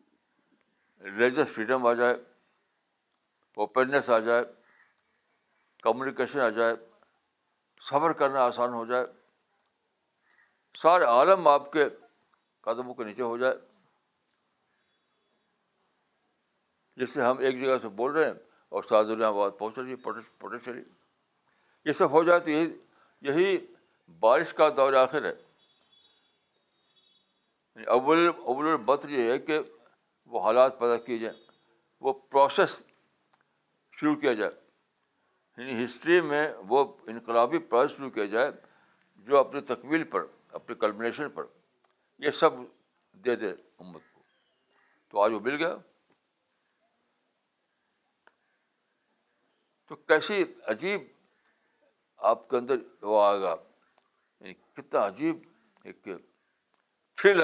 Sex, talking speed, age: male, 100 wpm, 60-79